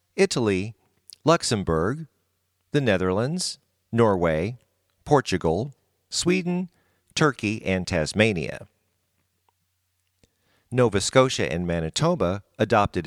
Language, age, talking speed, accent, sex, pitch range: English, 50-69, 70 wpm, American, male, 90-140 Hz